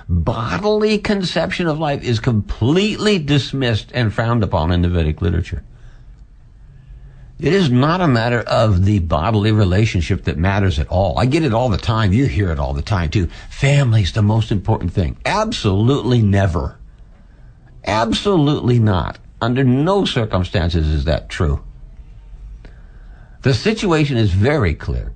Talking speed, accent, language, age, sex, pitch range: 145 wpm, American, English, 60-79, male, 95-130 Hz